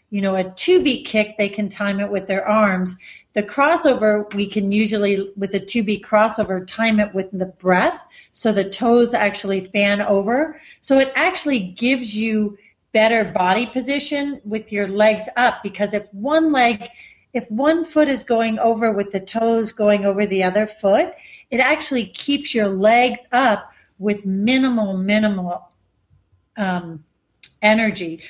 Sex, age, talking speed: female, 40-59, 160 wpm